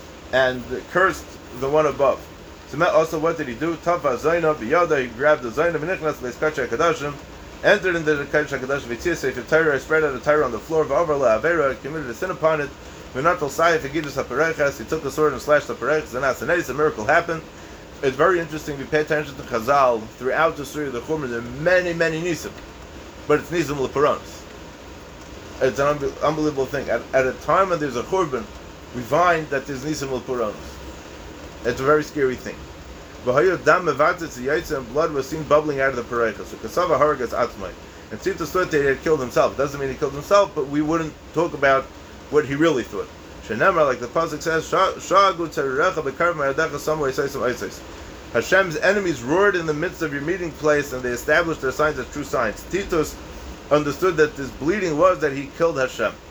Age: 30-49